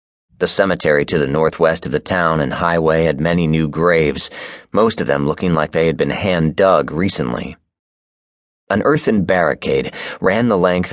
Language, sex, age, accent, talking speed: English, male, 30-49, American, 165 wpm